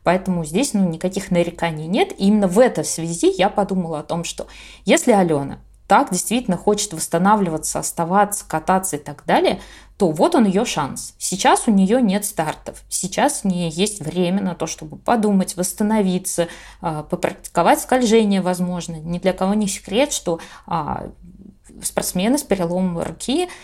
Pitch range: 175-210 Hz